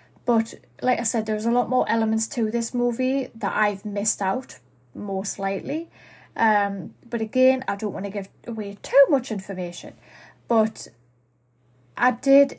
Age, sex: 30-49, female